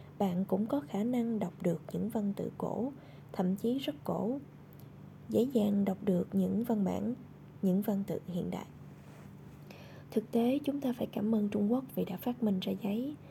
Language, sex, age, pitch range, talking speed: Vietnamese, female, 20-39, 185-235 Hz, 190 wpm